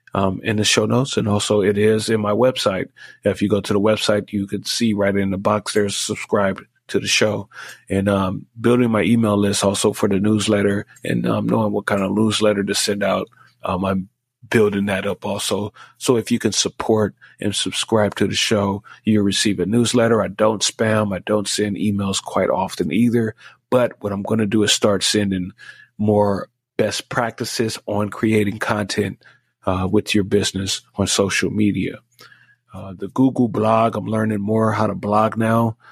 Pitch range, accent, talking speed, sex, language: 100-110 Hz, American, 190 wpm, male, English